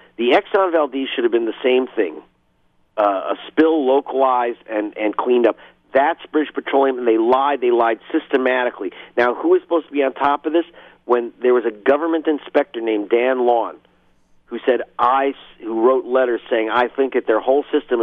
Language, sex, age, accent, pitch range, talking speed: English, male, 50-69, American, 110-145 Hz, 195 wpm